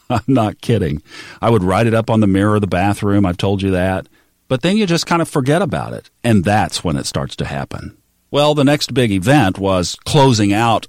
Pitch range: 90-120 Hz